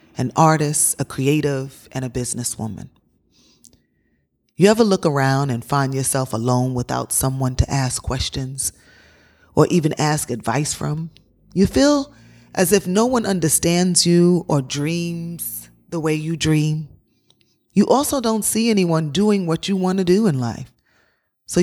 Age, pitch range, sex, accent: 30-49, 130-170 Hz, female, American